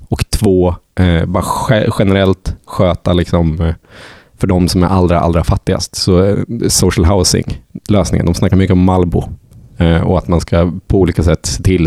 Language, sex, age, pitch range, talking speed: Swedish, male, 20-39, 85-100 Hz, 150 wpm